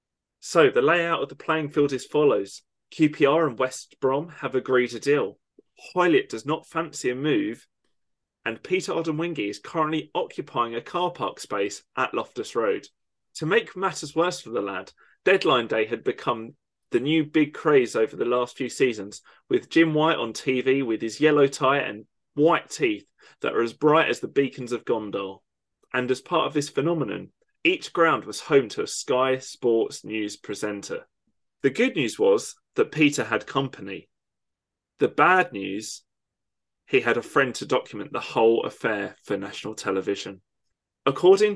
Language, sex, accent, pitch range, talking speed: English, male, British, 125-170 Hz, 170 wpm